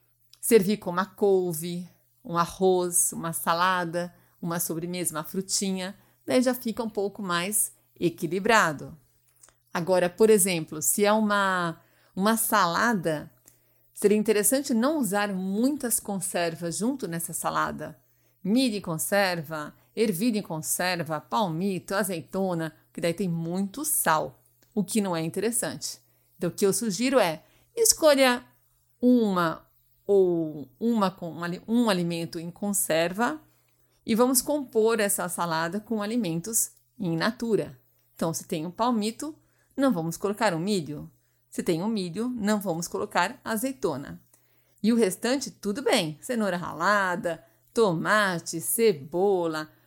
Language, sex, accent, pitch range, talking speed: Portuguese, female, Brazilian, 165-220 Hz, 130 wpm